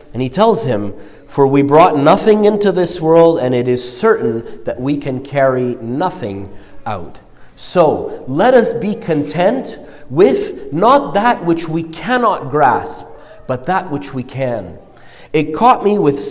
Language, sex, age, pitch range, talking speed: English, male, 40-59, 135-185 Hz, 155 wpm